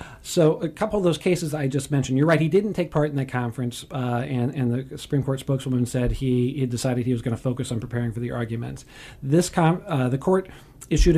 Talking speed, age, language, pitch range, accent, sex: 240 wpm, 40-59, English, 125-150 Hz, American, male